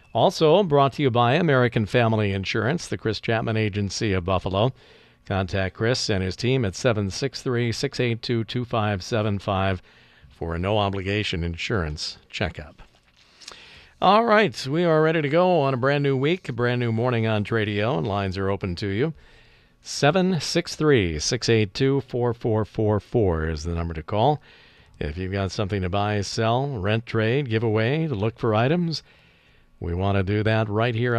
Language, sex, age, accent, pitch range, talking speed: English, male, 50-69, American, 95-130 Hz, 150 wpm